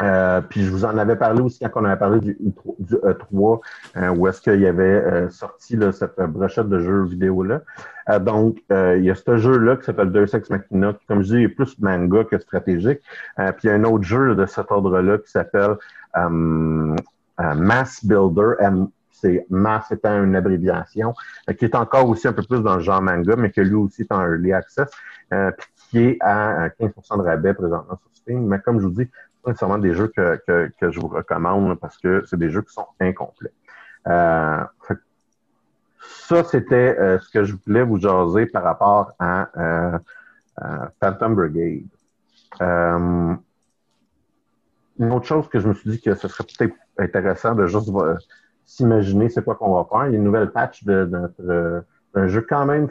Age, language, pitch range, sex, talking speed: 50-69, French, 95-115 Hz, male, 210 wpm